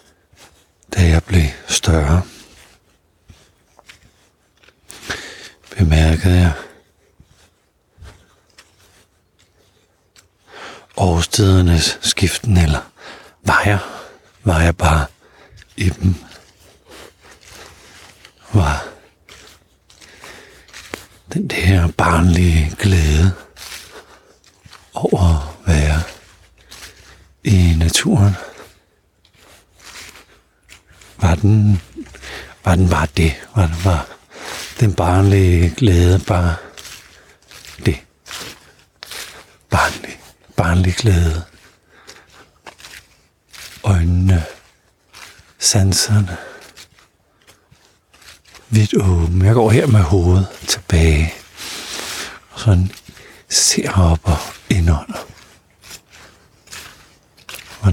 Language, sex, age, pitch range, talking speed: Danish, male, 60-79, 85-100 Hz, 60 wpm